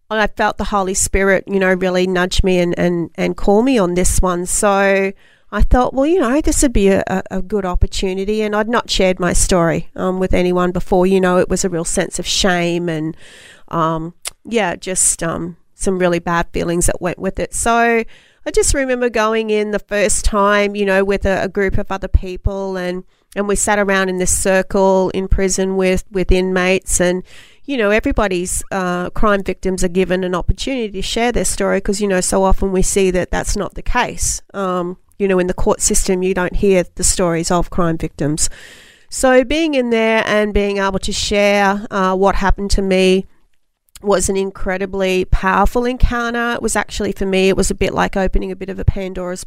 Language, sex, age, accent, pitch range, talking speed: English, female, 30-49, Australian, 185-210 Hz, 210 wpm